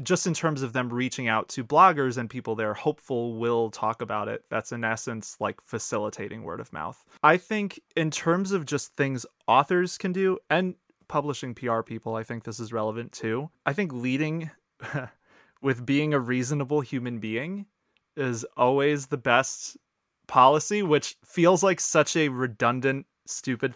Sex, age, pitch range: male, 30-49, 120-155 Hz